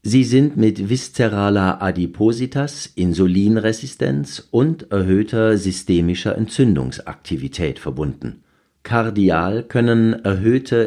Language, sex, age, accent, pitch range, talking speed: German, male, 50-69, German, 85-110 Hz, 75 wpm